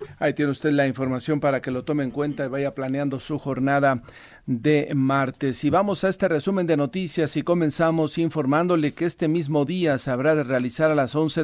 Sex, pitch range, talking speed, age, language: male, 130-160 Hz, 205 wpm, 40-59, Spanish